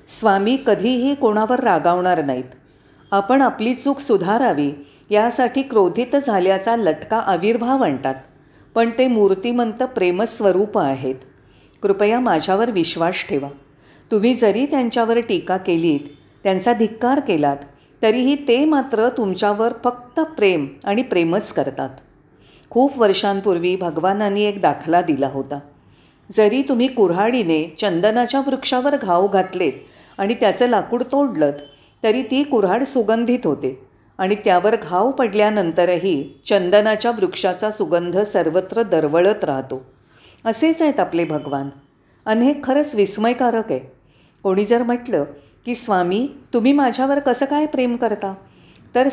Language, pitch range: Marathi, 165-245 Hz